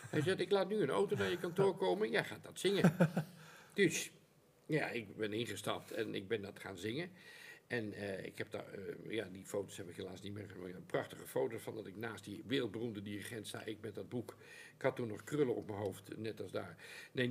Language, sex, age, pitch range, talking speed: Dutch, male, 50-69, 105-165 Hz, 245 wpm